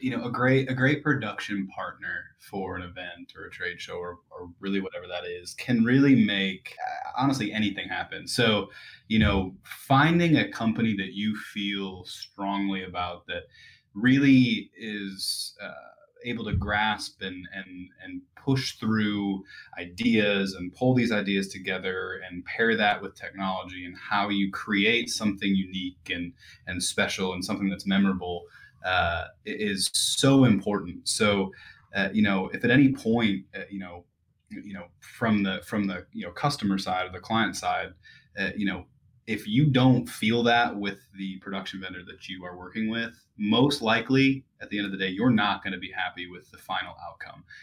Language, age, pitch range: English, 20-39, 95-115 Hz